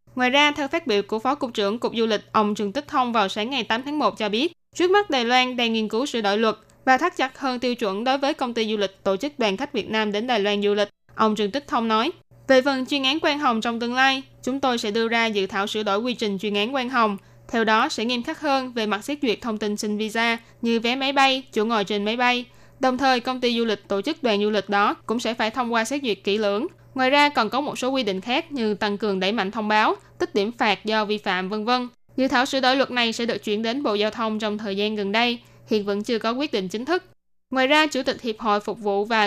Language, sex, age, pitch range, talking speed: Vietnamese, female, 10-29, 210-260 Hz, 290 wpm